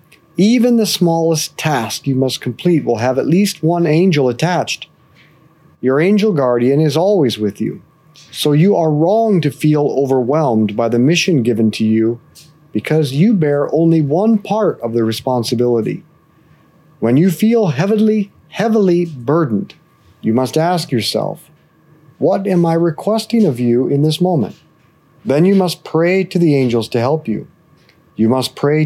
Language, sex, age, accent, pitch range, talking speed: English, male, 40-59, American, 130-175 Hz, 155 wpm